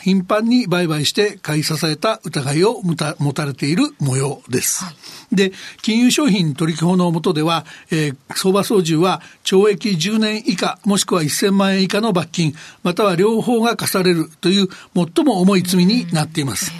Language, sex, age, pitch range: Japanese, male, 60-79, 165-215 Hz